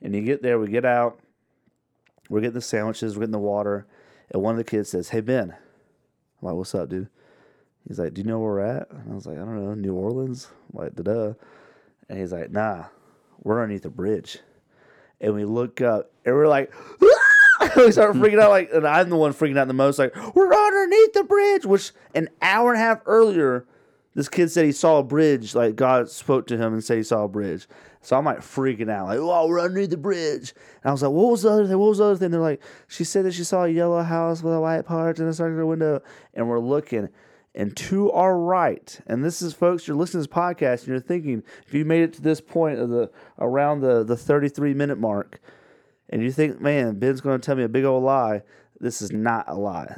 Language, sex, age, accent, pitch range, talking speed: English, male, 30-49, American, 110-170 Hz, 245 wpm